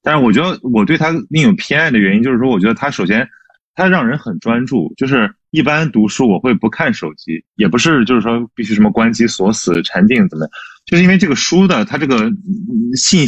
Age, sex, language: 20-39, male, Chinese